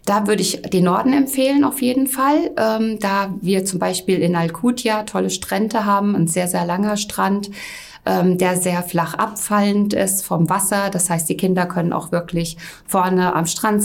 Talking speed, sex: 180 wpm, female